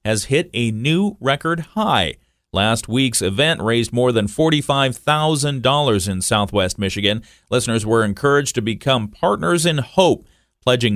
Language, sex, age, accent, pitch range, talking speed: English, male, 40-59, American, 105-135 Hz, 135 wpm